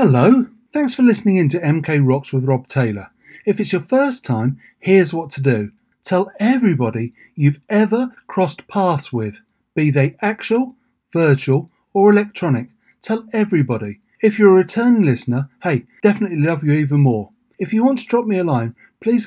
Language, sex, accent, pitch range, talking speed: English, male, British, 135-215 Hz, 170 wpm